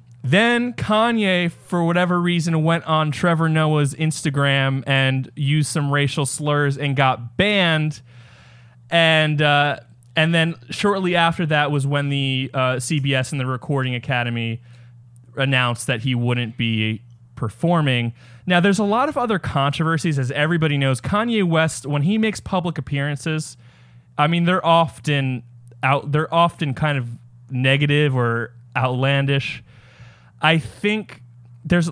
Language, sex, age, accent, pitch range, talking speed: English, male, 20-39, American, 125-160 Hz, 135 wpm